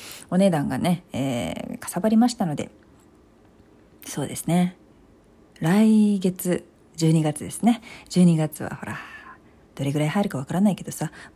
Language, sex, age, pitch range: Japanese, female, 40-59, 160-235 Hz